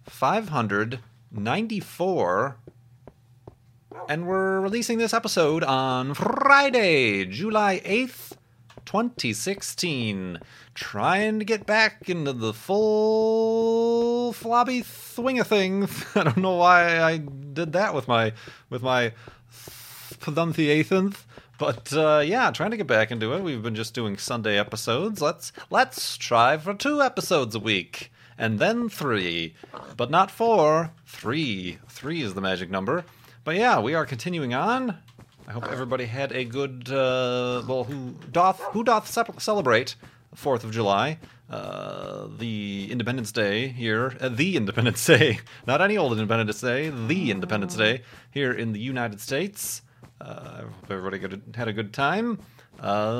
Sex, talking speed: male, 140 wpm